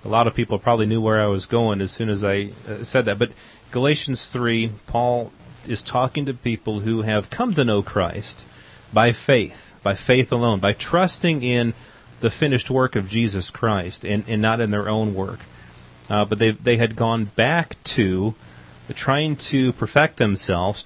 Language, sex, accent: English, male, American